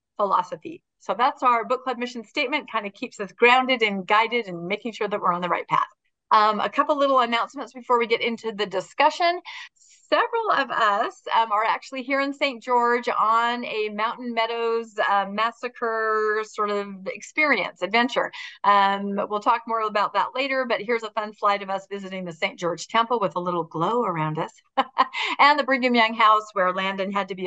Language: English